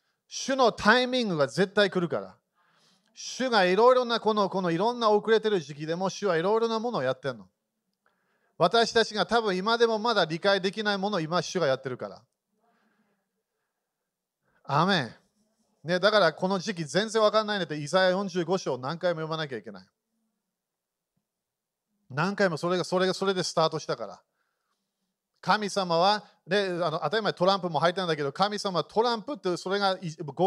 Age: 40-59